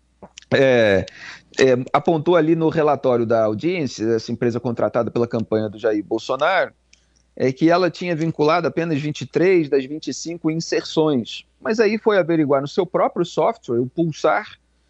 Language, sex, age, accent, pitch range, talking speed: Portuguese, male, 40-59, Brazilian, 115-180 Hz, 145 wpm